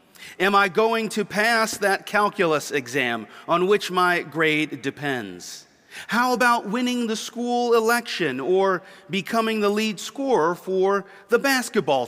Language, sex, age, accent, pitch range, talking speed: English, male, 40-59, American, 135-210 Hz, 135 wpm